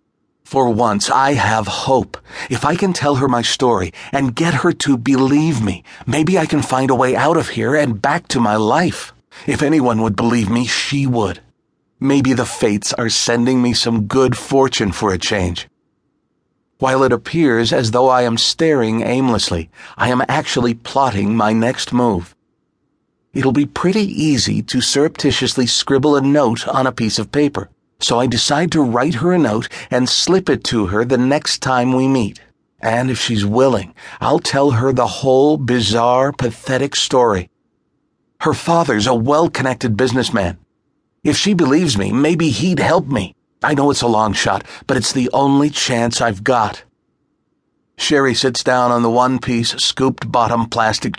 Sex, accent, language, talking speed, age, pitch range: male, American, English, 170 wpm, 40-59, 115-140 Hz